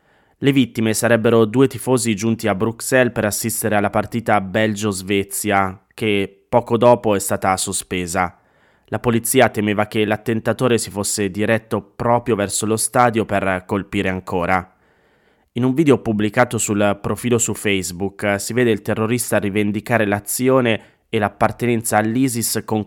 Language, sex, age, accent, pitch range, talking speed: Italian, male, 20-39, native, 100-120 Hz, 135 wpm